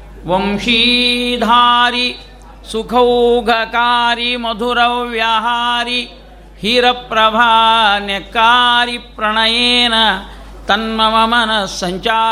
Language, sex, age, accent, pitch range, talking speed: Kannada, male, 50-69, native, 205-245 Hz, 55 wpm